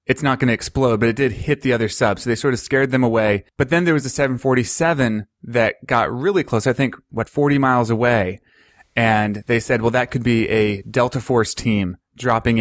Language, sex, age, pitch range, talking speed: English, male, 30-49, 110-135 Hz, 225 wpm